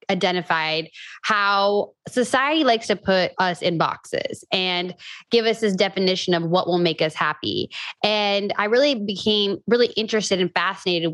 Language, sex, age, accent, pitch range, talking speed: English, female, 10-29, American, 175-210 Hz, 150 wpm